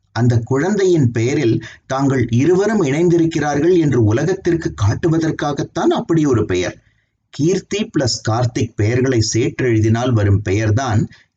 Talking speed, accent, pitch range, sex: 100 wpm, native, 110-135 Hz, male